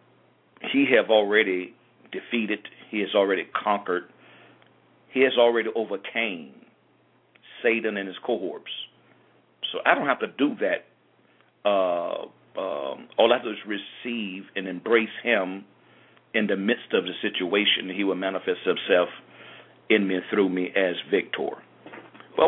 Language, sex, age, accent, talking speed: English, male, 50-69, American, 135 wpm